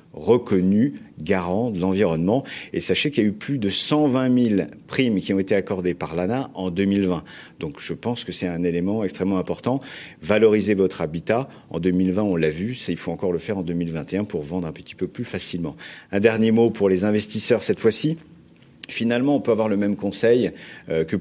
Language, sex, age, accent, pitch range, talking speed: French, male, 50-69, French, 90-110 Hz, 200 wpm